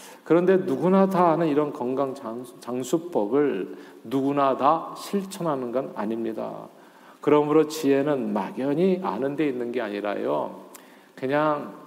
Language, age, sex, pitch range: Korean, 40-59, male, 130-175 Hz